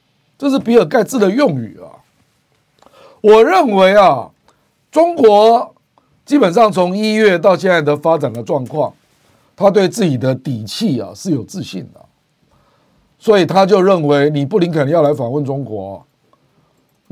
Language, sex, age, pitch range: Chinese, male, 50-69, 145-195 Hz